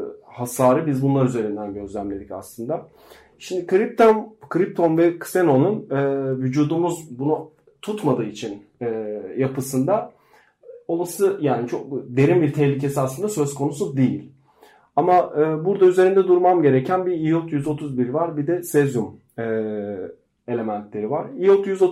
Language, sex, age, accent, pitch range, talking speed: Turkish, male, 40-59, native, 125-170 Hz, 120 wpm